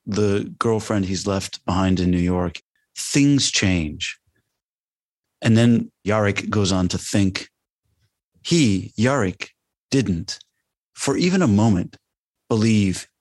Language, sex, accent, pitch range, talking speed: English, male, American, 95-120 Hz, 115 wpm